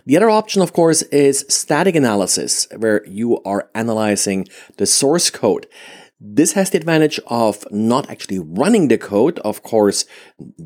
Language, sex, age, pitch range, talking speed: English, male, 50-69, 105-140 Hz, 160 wpm